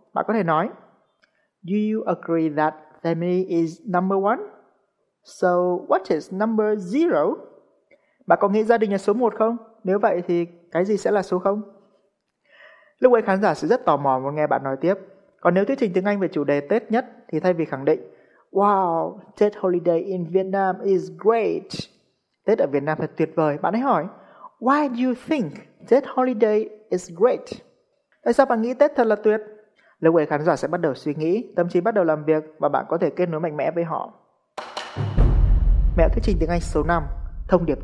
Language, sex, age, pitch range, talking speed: Vietnamese, male, 20-39, 160-215 Hz, 205 wpm